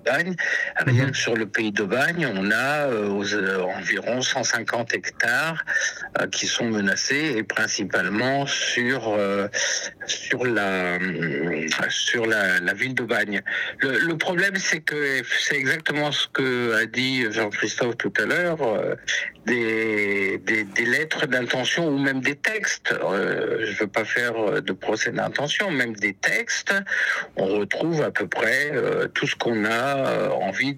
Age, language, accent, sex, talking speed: 60-79, French, French, male, 150 wpm